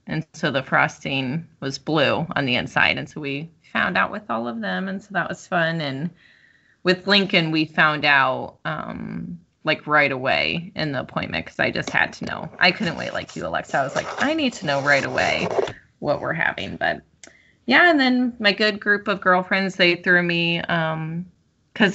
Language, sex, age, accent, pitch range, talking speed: English, female, 20-39, American, 155-195 Hz, 200 wpm